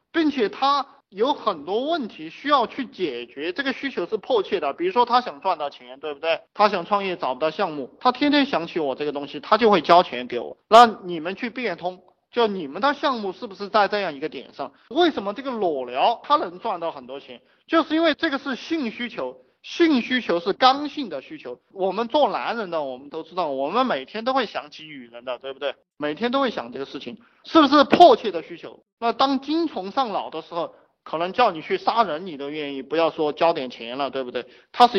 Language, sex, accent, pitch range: Chinese, male, native, 165-275 Hz